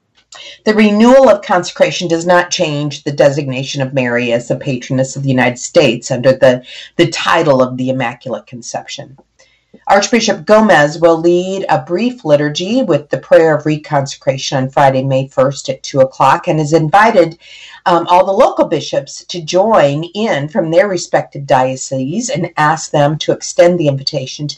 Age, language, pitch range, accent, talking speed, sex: 40-59, English, 135-180 Hz, American, 165 wpm, female